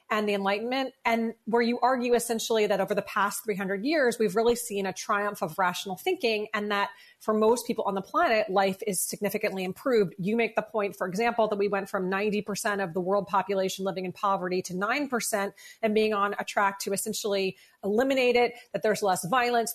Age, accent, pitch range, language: 30-49, American, 195-235 Hz, English